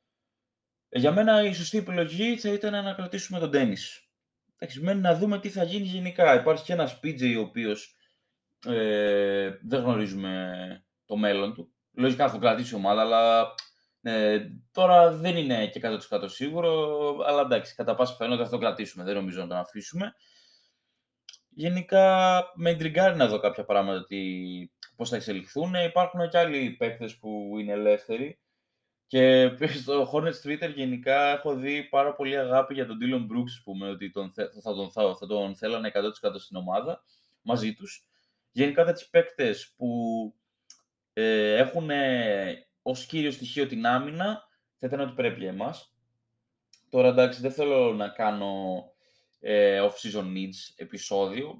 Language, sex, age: Greek, male, 20-39